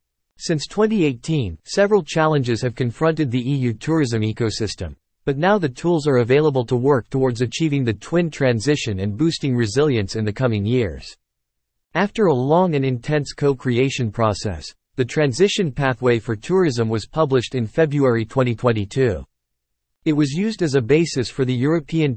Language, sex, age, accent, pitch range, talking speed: English, male, 50-69, American, 110-150 Hz, 150 wpm